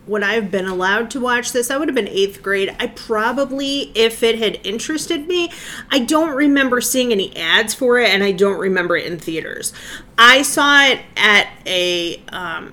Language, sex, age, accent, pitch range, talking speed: English, female, 30-49, American, 205-275 Hz, 200 wpm